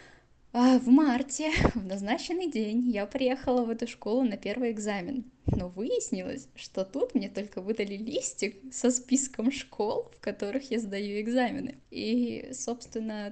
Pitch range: 200-250 Hz